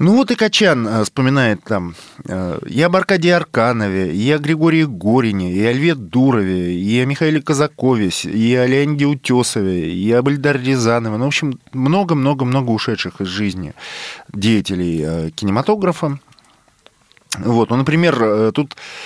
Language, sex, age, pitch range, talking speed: Russian, male, 20-39, 105-135 Hz, 130 wpm